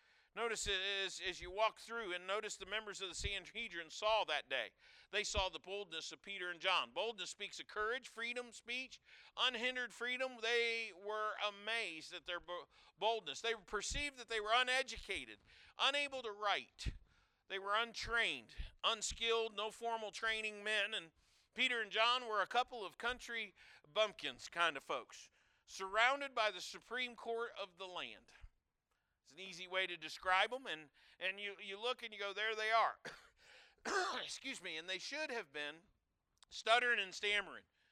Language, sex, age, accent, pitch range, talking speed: English, male, 50-69, American, 170-225 Hz, 160 wpm